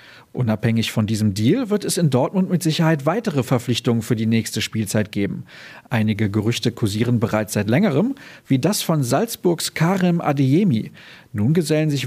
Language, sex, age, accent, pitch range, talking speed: German, male, 40-59, German, 120-175 Hz, 160 wpm